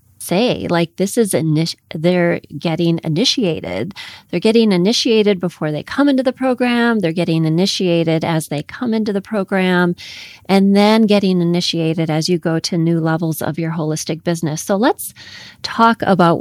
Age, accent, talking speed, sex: 30-49, American, 160 wpm, female